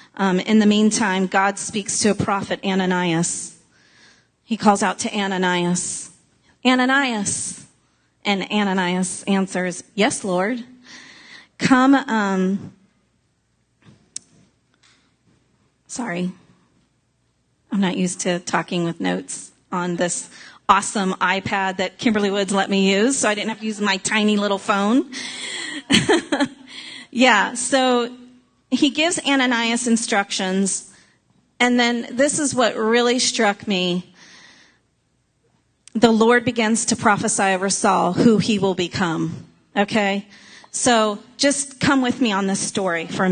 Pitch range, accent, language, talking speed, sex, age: 190-245 Hz, American, English, 120 wpm, female, 30-49